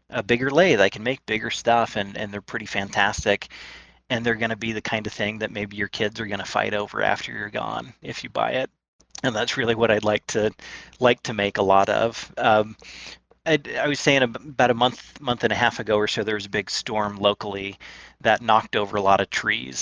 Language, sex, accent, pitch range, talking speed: English, male, American, 100-115 Hz, 240 wpm